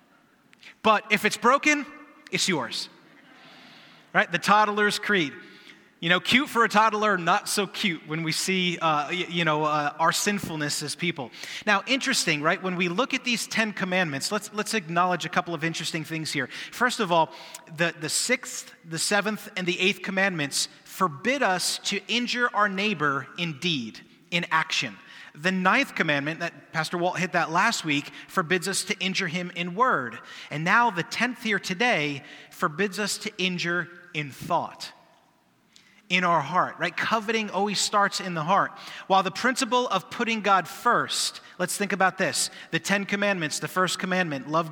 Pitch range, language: 170-215 Hz, English